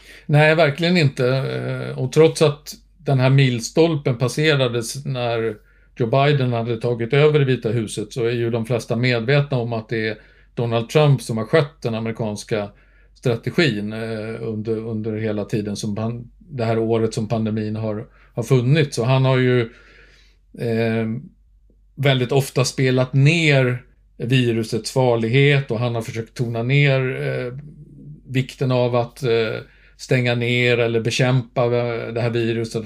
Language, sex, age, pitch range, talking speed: Swedish, male, 50-69, 115-140 Hz, 145 wpm